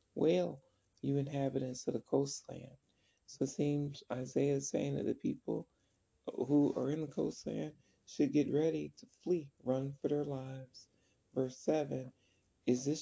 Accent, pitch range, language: American, 125-145 Hz, English